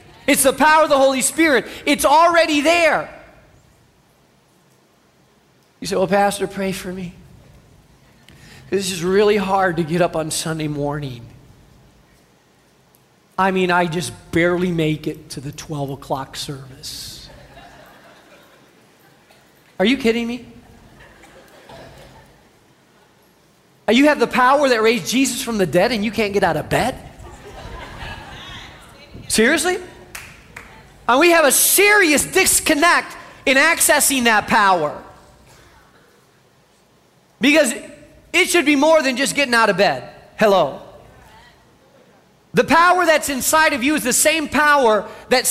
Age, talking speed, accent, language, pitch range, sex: 40-59, 125 wpm, American, English, 190-310 Hz, male